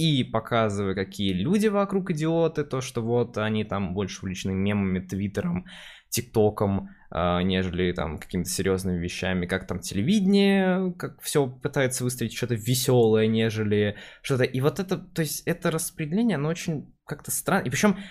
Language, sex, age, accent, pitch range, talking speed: Russian, male, 20-39, native, 100-150 Hz, 150 wpm